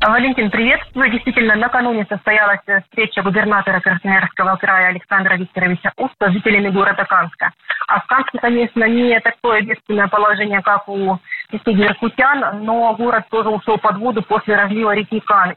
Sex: female